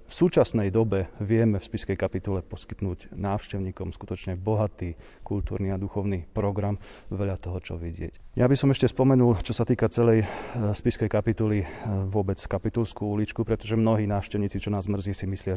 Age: 30-49